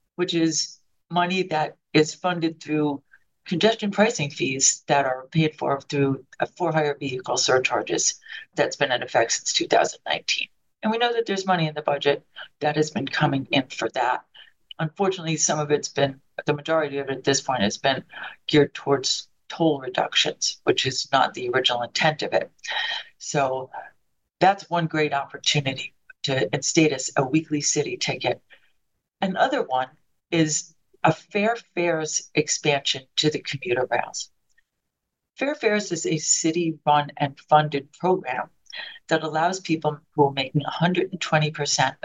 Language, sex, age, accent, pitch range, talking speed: English, female, 50-69, American, 140-170 Hz, 150 wpm